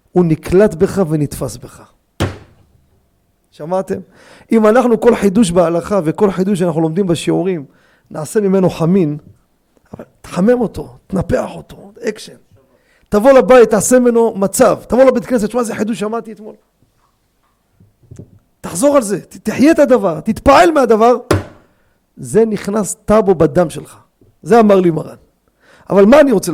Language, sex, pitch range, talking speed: Hebrew, male, 170-230 Hz, 135 wpm